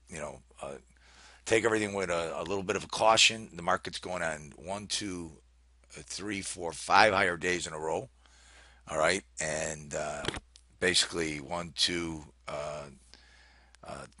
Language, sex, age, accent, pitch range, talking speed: English, male, 50-69, American, 65-95 Hz, 150 wpm